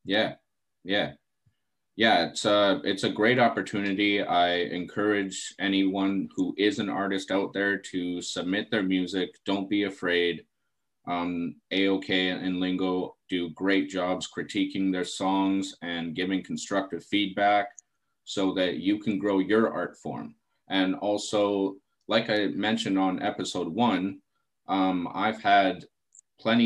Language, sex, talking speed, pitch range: English, male, 135 wpm, 90-100 Hz